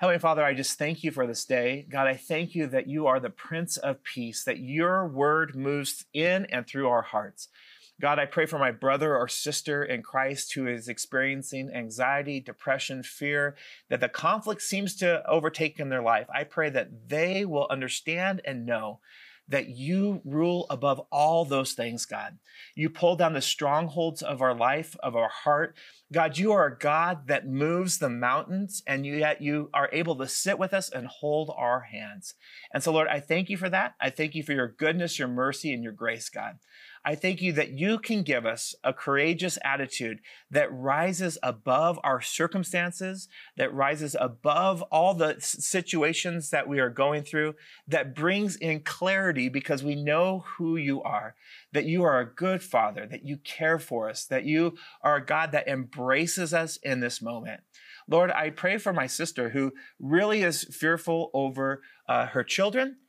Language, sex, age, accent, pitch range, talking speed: English, male, 30-49, American, 135-170 Hz, 185 wpm